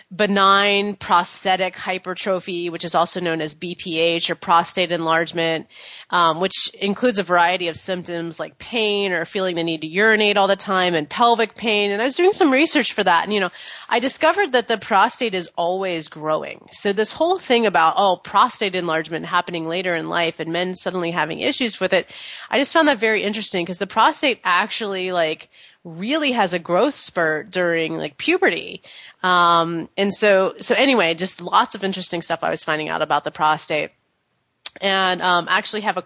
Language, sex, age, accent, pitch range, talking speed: English, female, 30-49, American, 170-215 Hz, 190 wpm